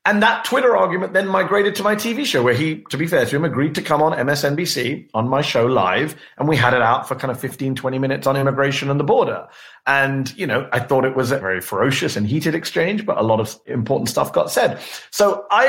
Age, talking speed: 30-49, 250 wpm